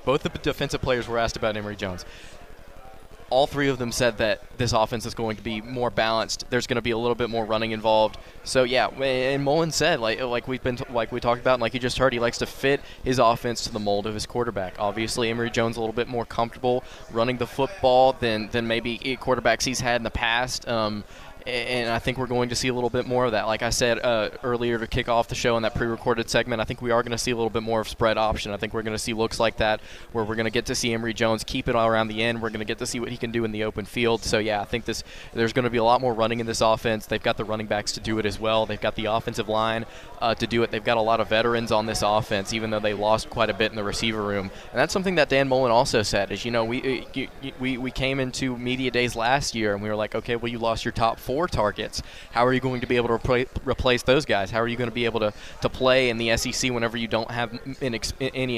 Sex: male